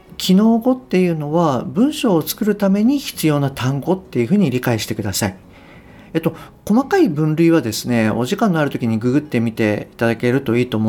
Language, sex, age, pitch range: Japanese, male, 50-69, 120-195 Hz